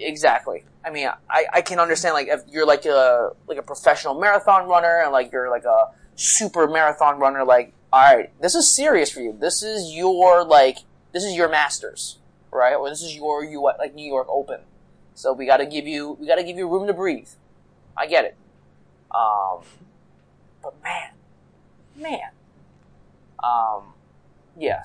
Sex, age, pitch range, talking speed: male, 20-39, 120-170 Hz, 170 wpm